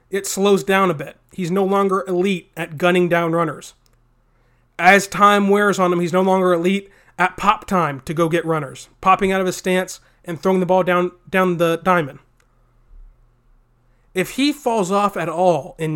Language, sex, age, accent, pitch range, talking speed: English, male, 30-49, American, 130-190 Hz, 185 wpm